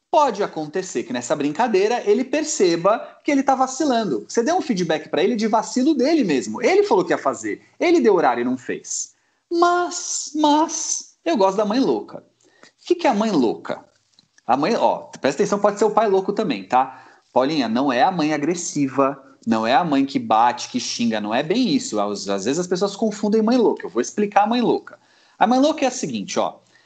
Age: 30-49